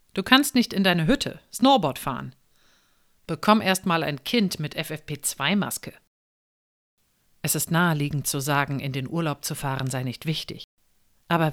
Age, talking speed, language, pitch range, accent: 50-69, 150 wpm, German, 140-190 Hz, German